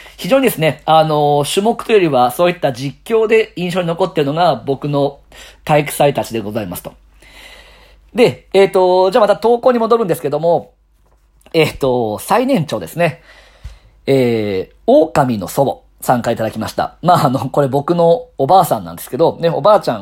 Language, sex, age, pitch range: Japanese, male, 40-59, 135-225 Hz